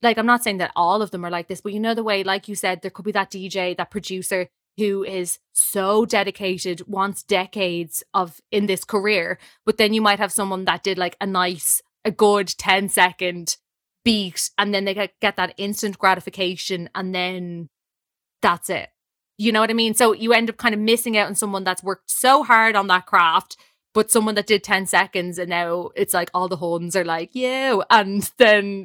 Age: 20-39